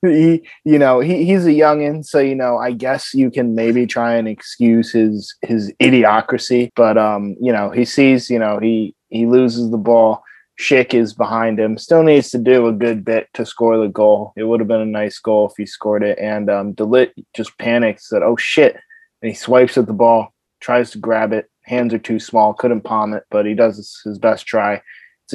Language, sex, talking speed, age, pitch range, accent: English, male, 220 wpm, 20-39, 110-125 Hz, American